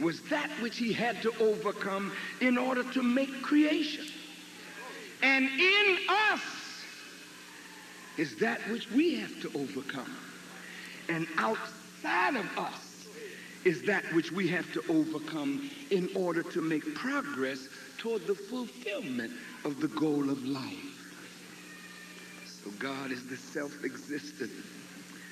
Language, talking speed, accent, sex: French, 120 wpm, American, male